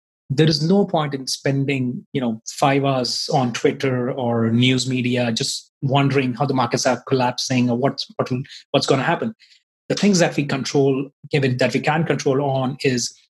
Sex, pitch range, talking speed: male, 125-150 Hz, 180 wpm